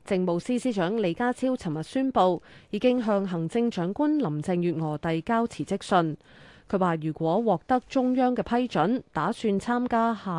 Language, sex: Chinese, female